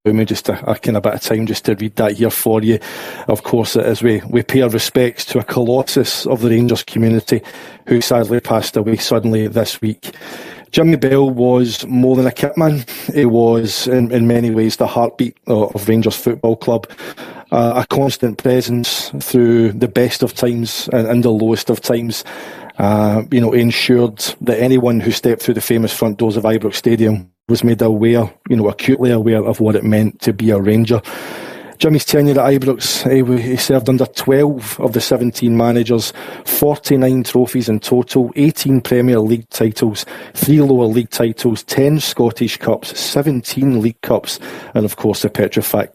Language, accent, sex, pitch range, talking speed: English, British, male, 110-125 Hz, 180 wpm